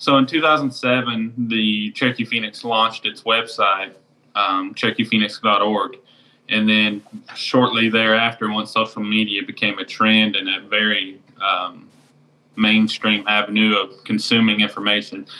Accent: American